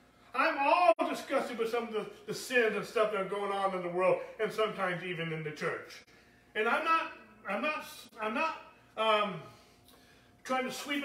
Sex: male